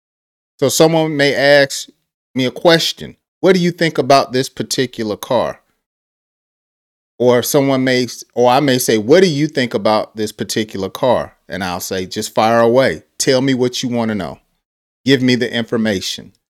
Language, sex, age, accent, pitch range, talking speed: English, male, 40-59, American, 105-140 Hz, 170 wpm